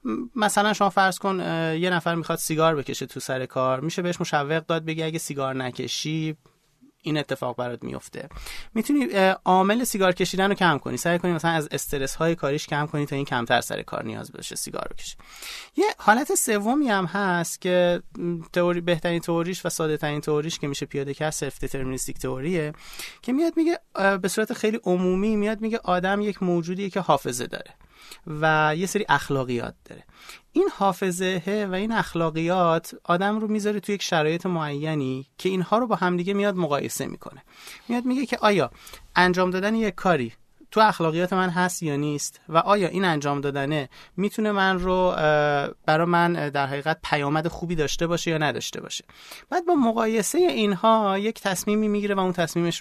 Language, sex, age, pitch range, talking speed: Persian, male, 30-49, 145-195 Hz, 170 wpm